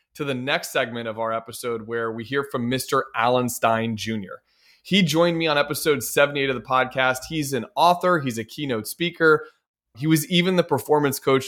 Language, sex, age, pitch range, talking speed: English, male, 20-39, 120-150 Hz, 195 wpm